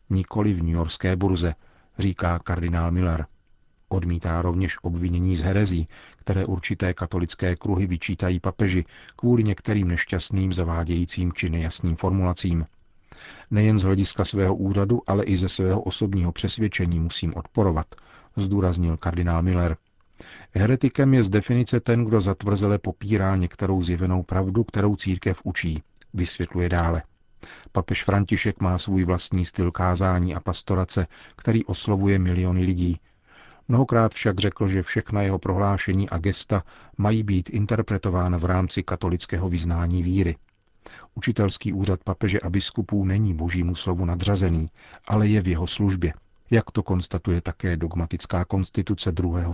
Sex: male